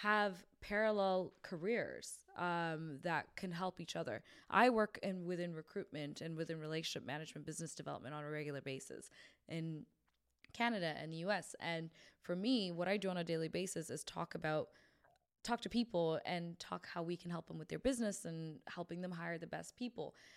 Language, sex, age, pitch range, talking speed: English, female, 20-39, 160-195 Hz, 185 wpm